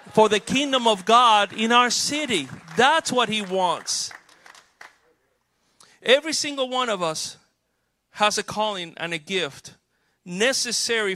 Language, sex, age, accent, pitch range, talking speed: English, male, 40-59, American, 155-215 Hz, 130 wpm